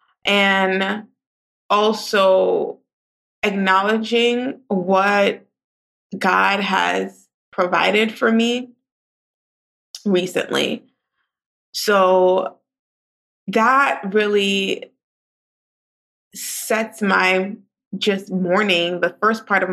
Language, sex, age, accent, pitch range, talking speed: English, female, 20-39, American, 185-220 Hz, 65 wpm